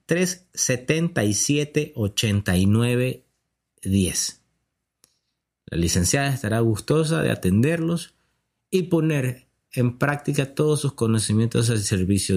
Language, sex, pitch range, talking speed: Spanish, male, 105-145 Hz, 85 wpm